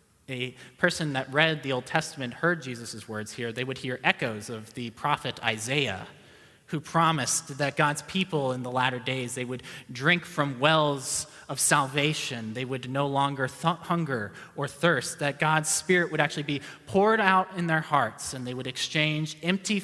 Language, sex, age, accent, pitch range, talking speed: English, male, 30-49, American, 105-145 Hz, 180 wpm